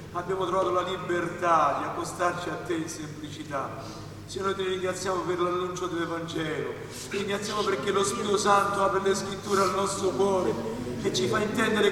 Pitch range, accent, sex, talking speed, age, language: 190-235 Hz, native, male, 160 wpm, 40-59, Italian